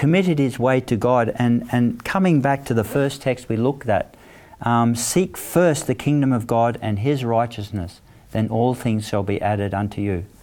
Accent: Australian